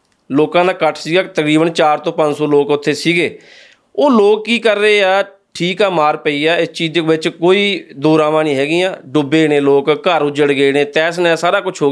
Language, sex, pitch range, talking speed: Punjabi, male, 150-190 Hz, 215 wpm